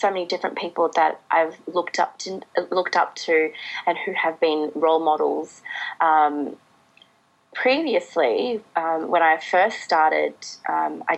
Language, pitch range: English, 160-200 Hz